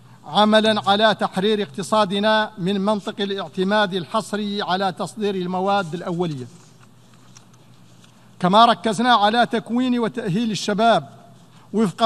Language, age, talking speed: Arabic, 50-69, 95 wpm